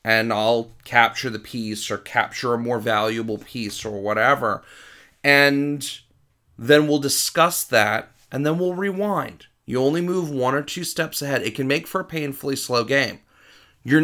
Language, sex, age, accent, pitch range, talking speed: English, male, 30-49, American, 115-150 Hz, 165 wpm